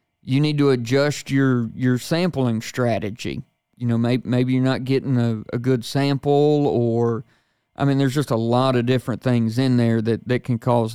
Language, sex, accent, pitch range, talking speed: English, male, American, 125-145 Hz, 190 wpm